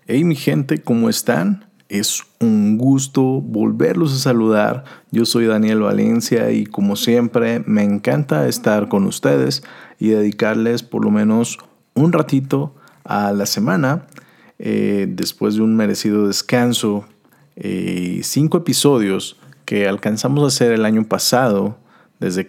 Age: 40-59